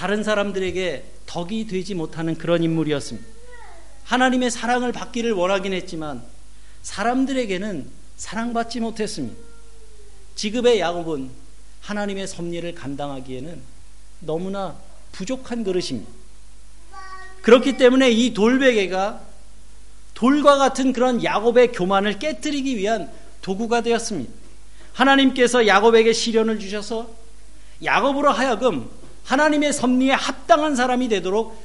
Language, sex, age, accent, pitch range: Korean, male, 40-59, native, 185-245 Hz